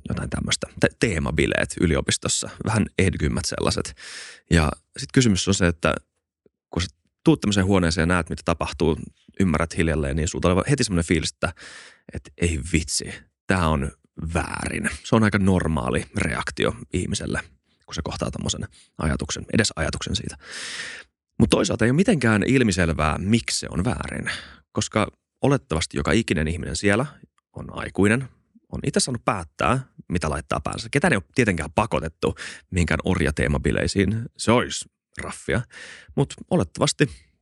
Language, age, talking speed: Finnish, 30-49, 140 wpm